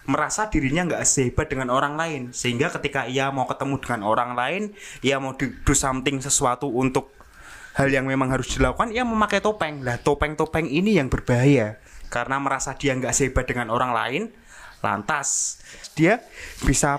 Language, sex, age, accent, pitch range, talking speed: Indonesian, male, 20-39, native, 125-150 Hz, 160 wpm